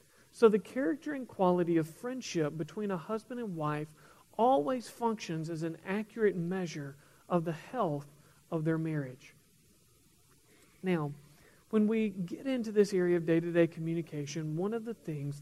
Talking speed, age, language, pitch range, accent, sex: 150 wpm, 40-59, English, 155-215 Hz, American, male